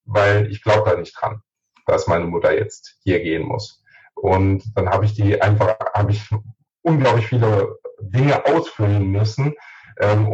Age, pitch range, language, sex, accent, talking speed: 30-49, 100-120 Hz, German, male, German, 155 wpm